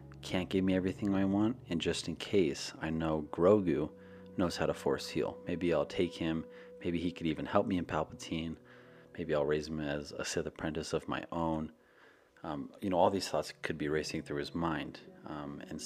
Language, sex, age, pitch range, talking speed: English, male, 30-49, 75-95 Hz, 210 wpm